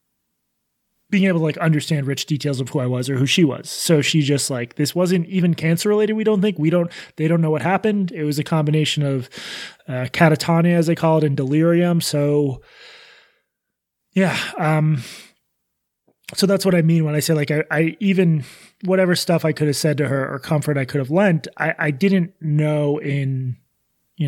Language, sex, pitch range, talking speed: English, male, 150-185 Hz, 205 wpm